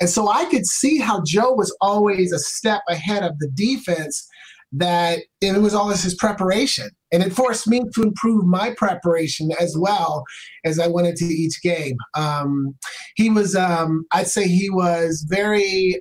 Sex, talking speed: male, 170 wpm